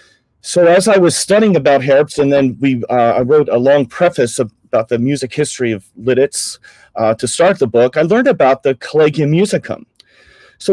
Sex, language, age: male, English, 40-59